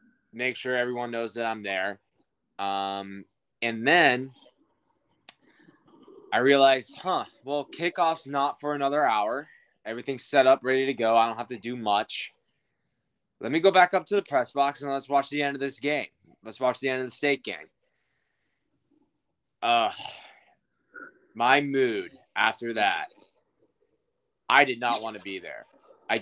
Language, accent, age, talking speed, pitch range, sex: English, American, 20-39, 160 wpm, 115-145 Hz, male